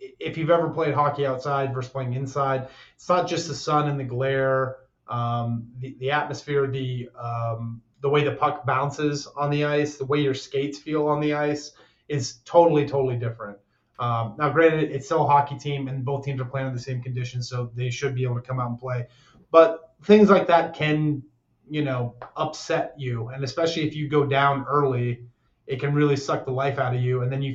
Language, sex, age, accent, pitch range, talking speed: English, male, 30-49, American, 125-150 Hz, 215 wpm